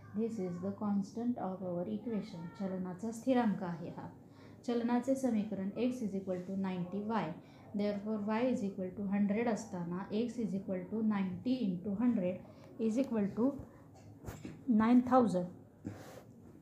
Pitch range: 185-225 Hz